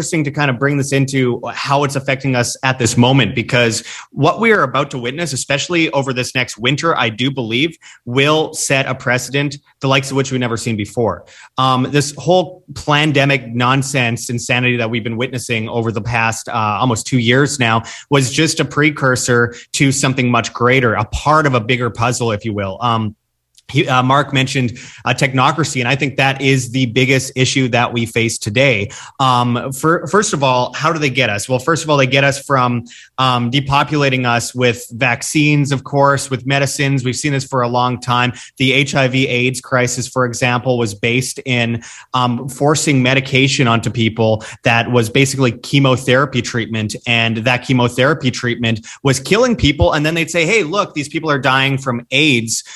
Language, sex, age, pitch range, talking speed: English, male, 30-49, 120-140 Hz, 190 wpm